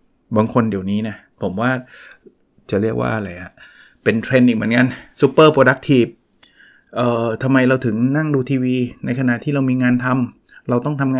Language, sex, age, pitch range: Thai, male, 20-39, 115-140 Hz